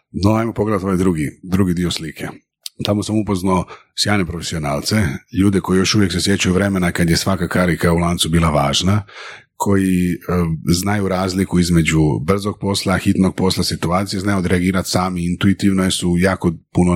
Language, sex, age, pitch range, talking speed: Croatian, male, 40-59, 85-105 Hz, 165 wpm